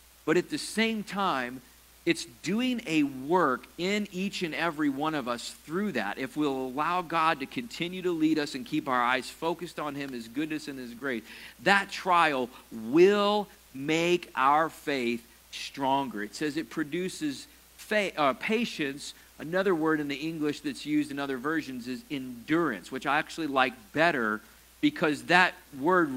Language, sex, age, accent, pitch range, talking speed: English, male, 50-69, American, 135-180 Hz, 165 wpm